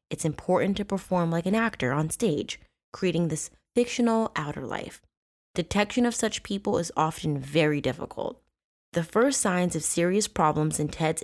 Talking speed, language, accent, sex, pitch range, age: 160 wpm, English, American, female, 150-195 Hz, 20-39